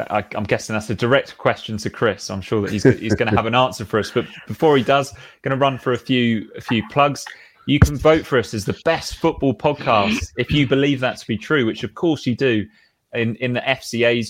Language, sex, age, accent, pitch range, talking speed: English, male, 20-39, British, 105-130 Hz, 250 wpm